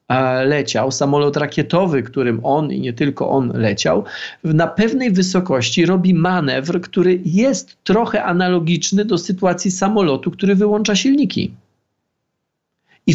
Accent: native